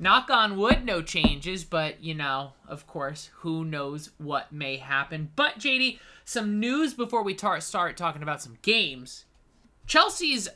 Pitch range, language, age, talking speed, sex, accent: 150-210 Hz, English, 30-49, 160 wpm, male, American